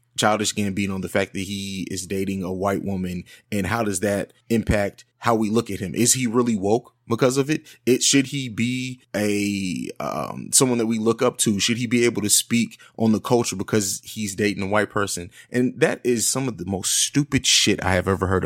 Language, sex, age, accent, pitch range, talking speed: English, male, 20-39, American, 100-130 Hz, 225 wpm